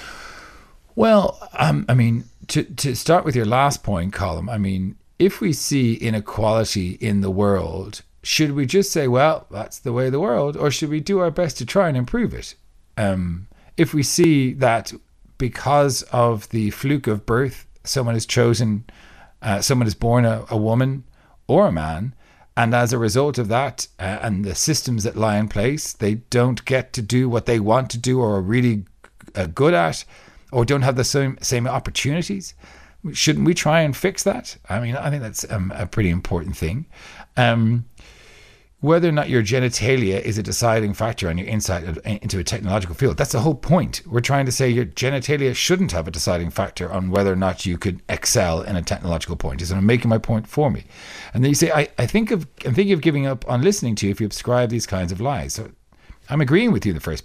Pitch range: 100-135 Hz